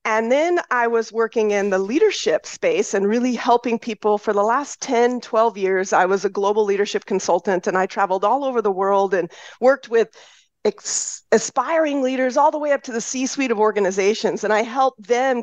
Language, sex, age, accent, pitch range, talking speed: English, female, 40-59, American, 210-275 Hz, 195 wpm